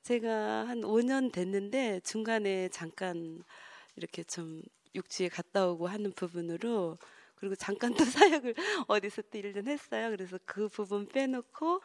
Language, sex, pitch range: Korean, female, 185-255 Hz